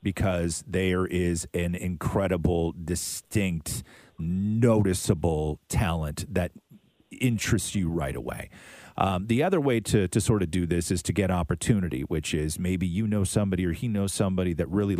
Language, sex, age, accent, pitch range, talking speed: English, male, 40-59, American, 90-115 Hz, 155 wpm